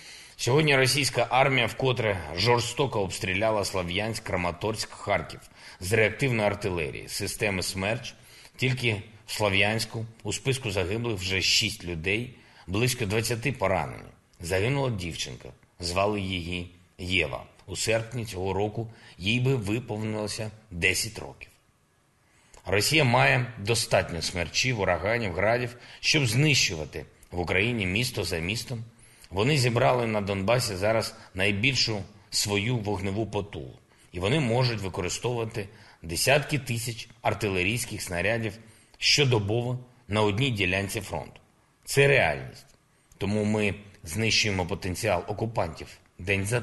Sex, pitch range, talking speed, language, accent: male, 95-120 Hz, 110 wpm, Ukrainian, native